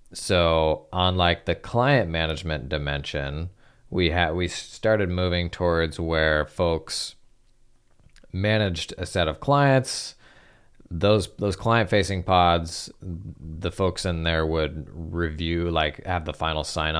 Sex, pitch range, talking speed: male, 80-95 Hz, 125 wpm